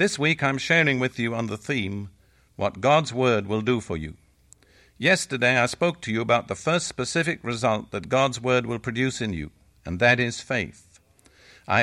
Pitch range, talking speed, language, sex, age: 105-135 Hz, 195 wpm, English, male, 60-79